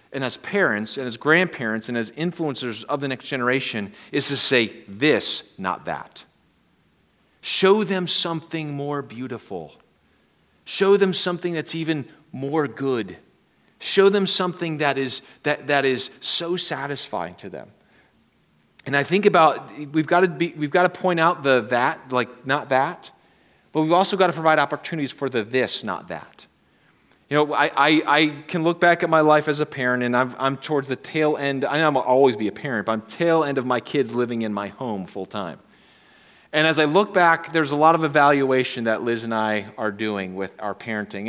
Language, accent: English, American